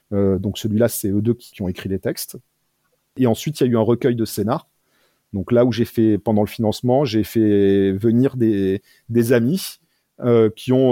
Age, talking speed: 40-59, 215 wpm